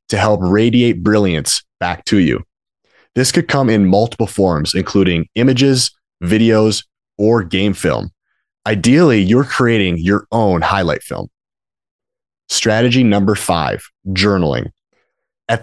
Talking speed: 120 wpm